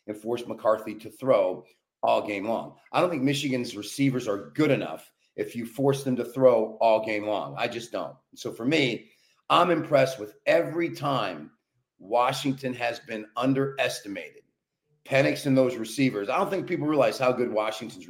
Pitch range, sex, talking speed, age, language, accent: 125-195 Hz, male, 170 wpm, 40-59, English, American